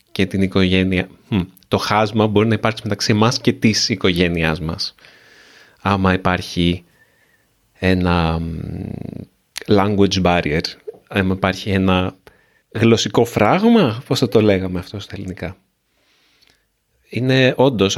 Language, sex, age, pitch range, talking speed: Greek, male, 30-49, 95-130 Hz, 115 wpm